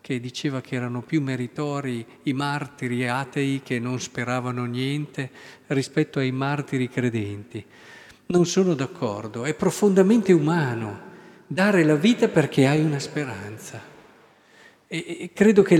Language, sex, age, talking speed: Italian, male, 50-69, 125 wpm